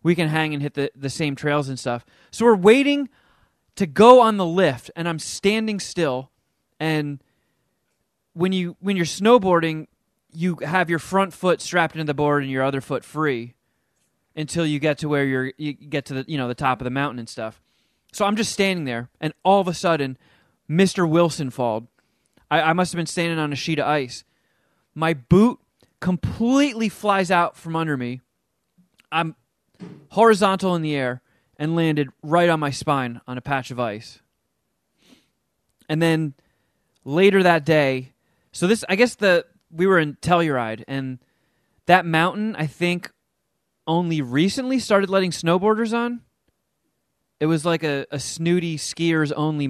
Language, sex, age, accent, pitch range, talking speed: English, male, 20-39, American, 135-180 Hz, 175 wpm